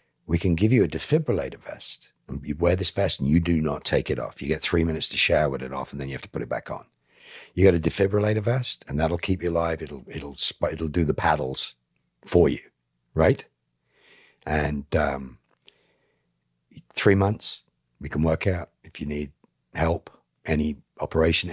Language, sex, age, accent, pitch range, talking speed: English, male, 60-79, British, 70-95 Hz, 195 wpm